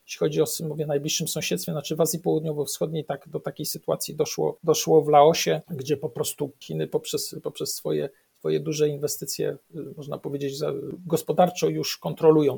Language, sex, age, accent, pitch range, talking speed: Polish, male, 50-69, native, 145-160 Hz, 165 wpm